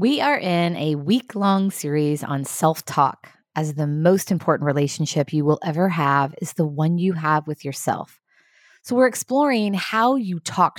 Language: English